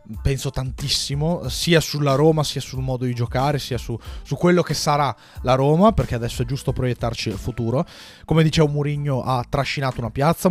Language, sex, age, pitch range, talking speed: Italian, male, 30-49, 125-150 Hz, 185 wpm